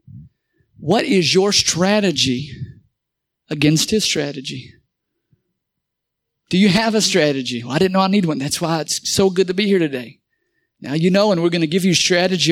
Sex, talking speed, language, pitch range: male, 175 wpm, English, 170-245 Hz